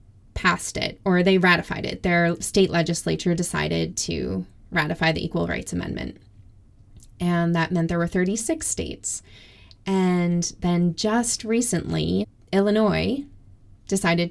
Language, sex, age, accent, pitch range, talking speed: English, female, 20-39, American, 150-190 Hz, 120 wpm